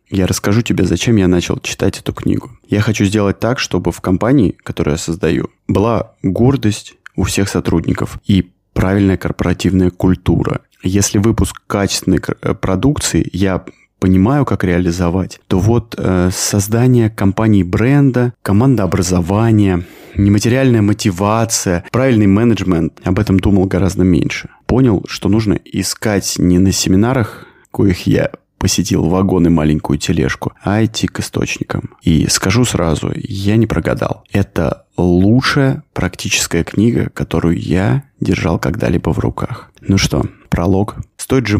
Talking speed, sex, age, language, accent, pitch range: 130 wpm, male, 20-39, Russian, native, 90-110 Hz